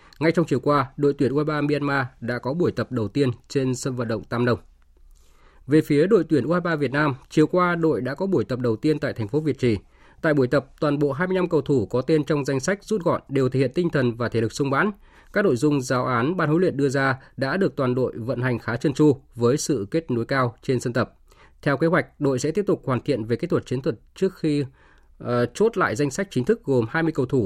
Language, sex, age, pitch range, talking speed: Vietnamese, male, 20-39, 120-155 Hz, 260 wpm